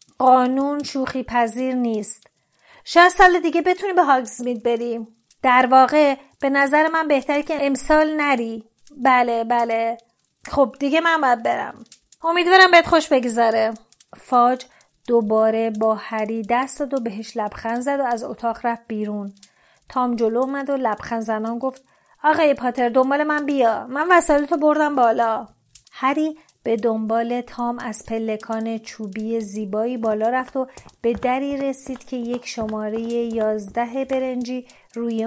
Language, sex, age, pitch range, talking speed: Persian, female, 30-49, 225-275 Hz, 140 wpm